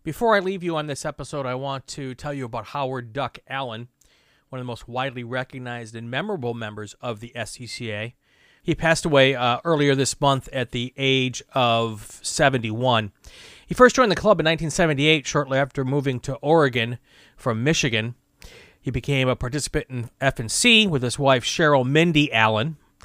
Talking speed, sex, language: 170 wpm, male, English